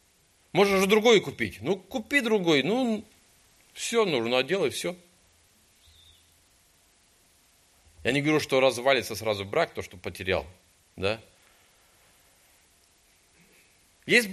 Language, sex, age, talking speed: Russian, male, 40-59, 105 wpm